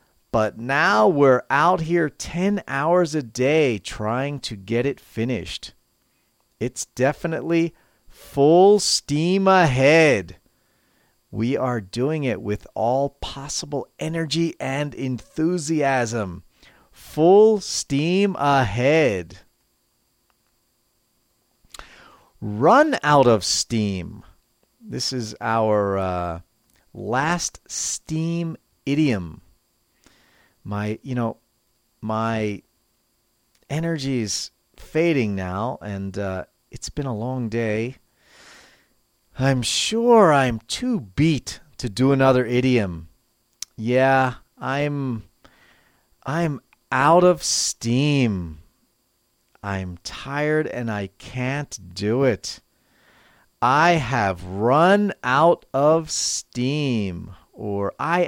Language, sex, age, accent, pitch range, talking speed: English, male, 40-59, American, 110-150 Hz, 90 wpm